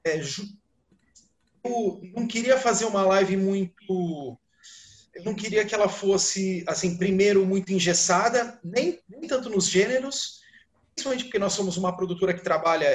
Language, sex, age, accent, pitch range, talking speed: Portuguese, male, 30-49, Brazilian, 150-200 Hz, 145 wpm